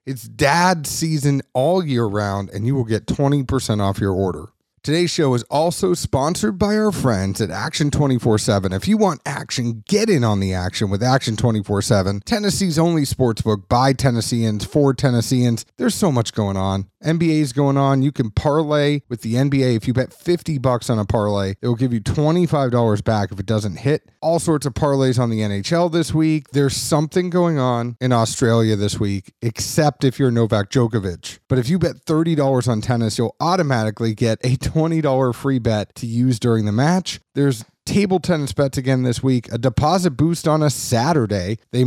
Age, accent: 30-49, American